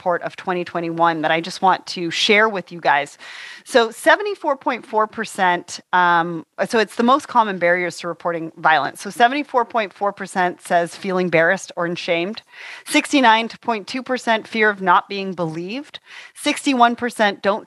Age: 30-49